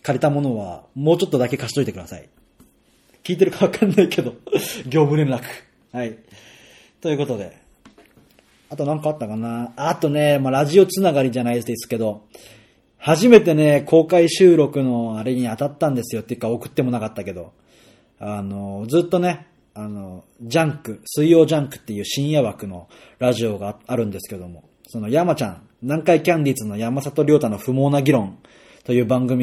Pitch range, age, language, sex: 110-155 Hz, 30-49, Japanese, male